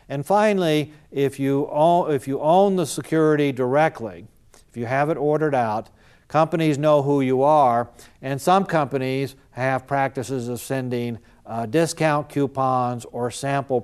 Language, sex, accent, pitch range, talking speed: English, male, American, 115-145 Hz, 140 wpm